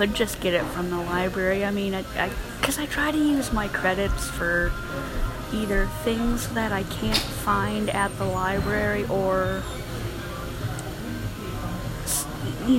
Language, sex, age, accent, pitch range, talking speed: English, female, 20-39, American, 170-225 Hz, 140 wpm